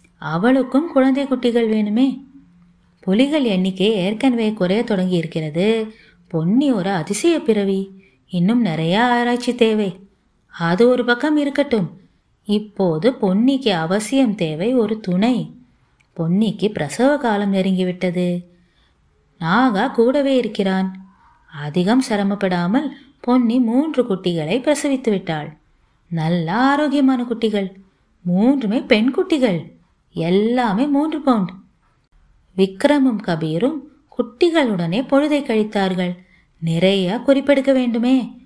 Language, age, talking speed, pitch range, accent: Tamil, 30-49, 90 wpm, 180-255 Hz, native